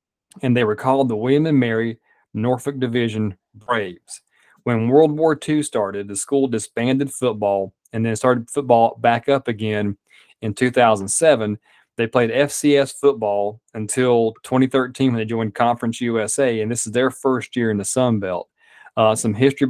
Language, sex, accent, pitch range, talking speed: English, male, American, 110-130 Hz, 160 wpm